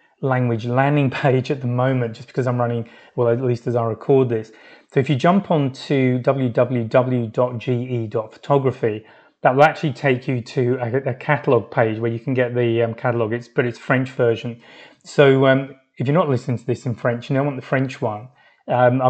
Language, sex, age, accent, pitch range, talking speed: English, male, 30-49, British, 120-140 Hz, 200 wpm